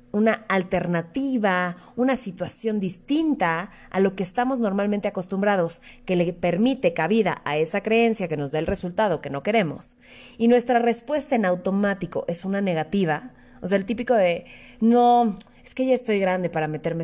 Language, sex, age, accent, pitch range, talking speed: Spanish, female, 20-39, Mexican, 170-235 Hz, 165 wpm